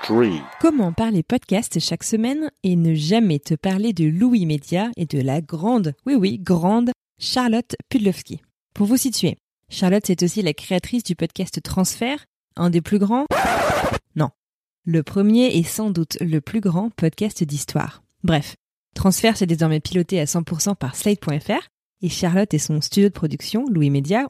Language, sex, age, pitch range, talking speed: French, female, 20-39, 170-220 Hz, 165 wpm